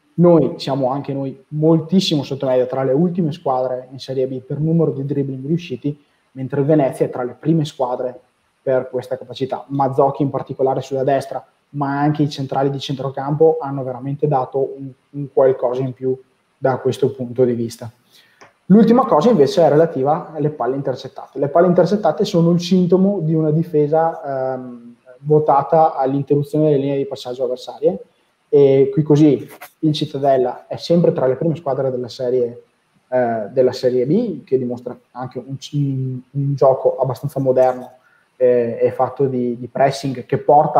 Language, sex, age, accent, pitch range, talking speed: Italian, male, 20-39, native, 125-150 Hz, 160 wpm